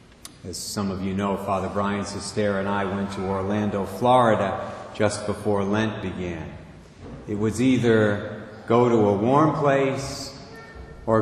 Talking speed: 145 wpm